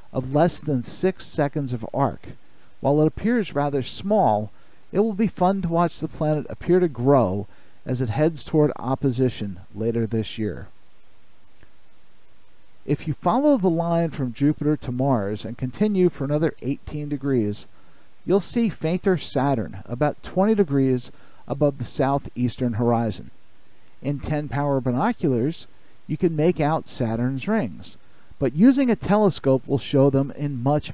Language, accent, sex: English, American, male